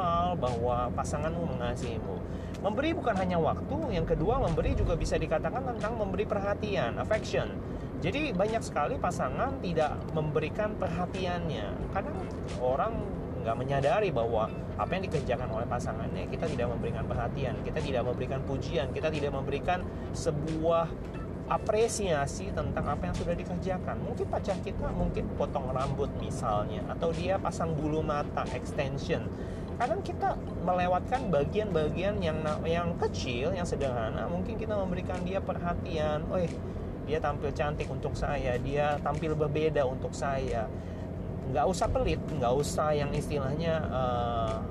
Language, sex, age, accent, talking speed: Indonesian, male, 30-49, native, 130 wpm